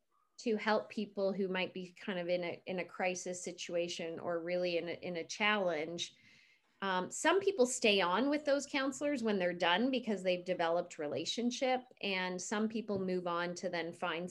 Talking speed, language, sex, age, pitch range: 185 wpm, English, female, 30-49, 180-235 Hz